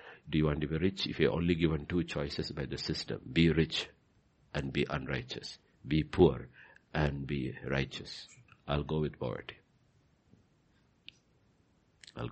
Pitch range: 70-85 Hz